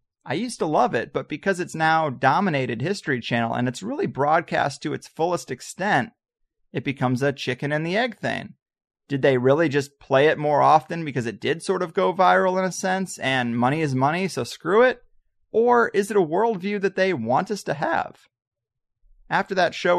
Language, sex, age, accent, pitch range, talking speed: English, male, 30-49, American, 135-180 Hz, 200 wpm